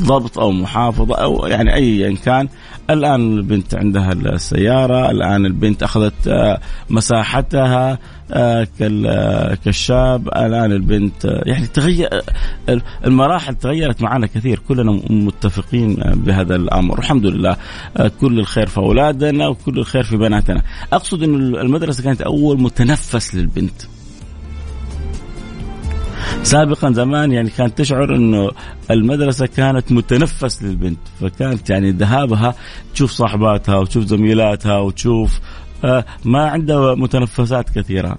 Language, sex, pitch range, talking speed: Arabic, male, 95-125 Hz, 105 wpm